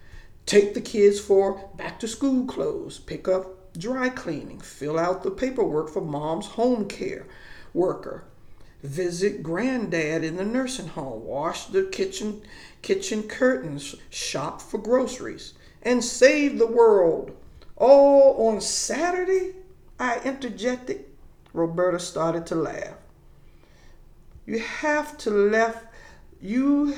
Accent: American